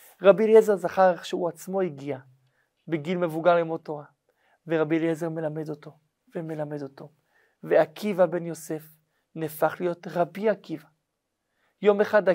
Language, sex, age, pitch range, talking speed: Hebrew, male, 40-59, 155-190 Hz, 125 wpm